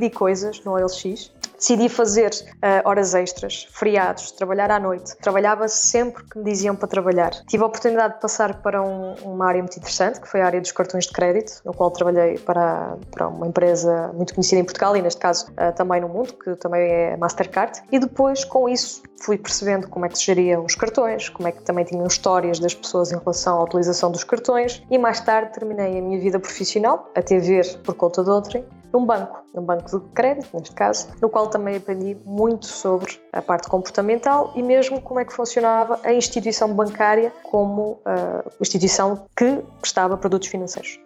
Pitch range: 185-230 Hz